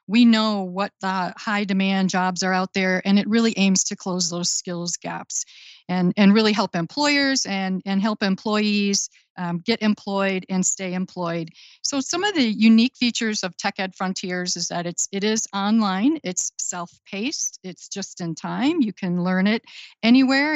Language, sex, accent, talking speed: English, female, American, 170 wpm